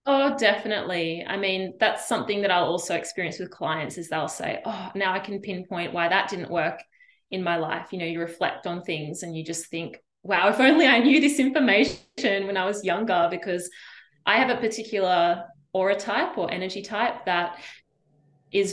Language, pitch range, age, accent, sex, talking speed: English, 180-225 Hz, 20-39, Australian, female, 190 wpm